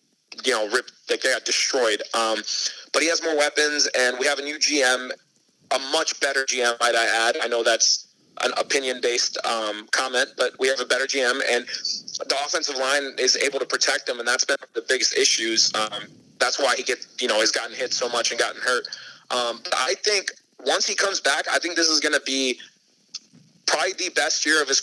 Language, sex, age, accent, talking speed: English, male, 30-49, American, 210 wpm